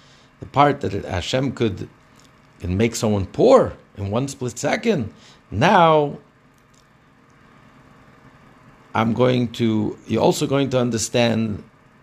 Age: 60-79